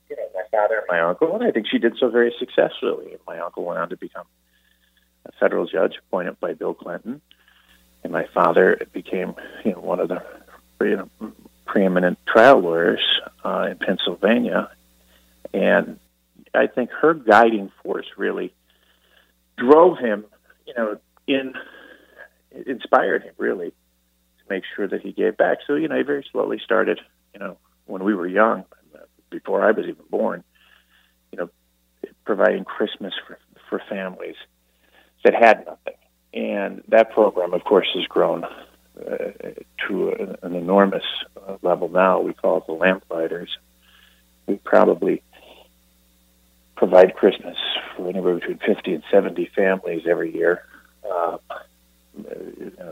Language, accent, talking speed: English, American, 140 wpm